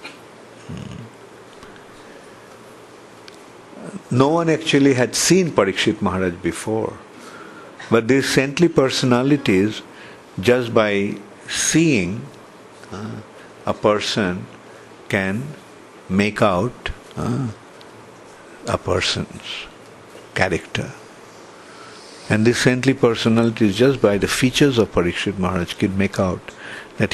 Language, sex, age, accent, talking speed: English, male, 50-69, Indian, 85 wpm